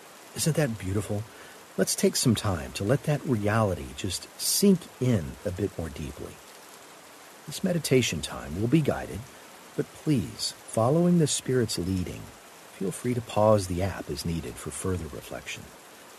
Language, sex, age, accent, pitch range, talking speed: English, male, 50-69, American, 90-130 Hz, 150 wpm